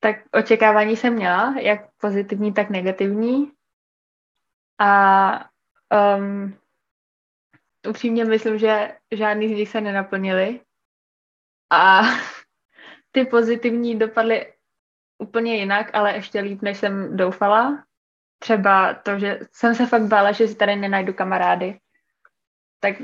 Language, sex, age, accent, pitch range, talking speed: Czech, female, 20-39, native, 195-220 Hz, 110 wpm